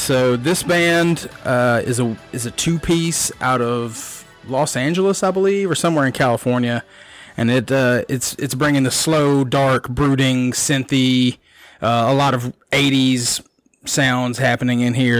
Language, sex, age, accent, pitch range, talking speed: English, male, 30-49, American, 125-145 Hz, 155 wpm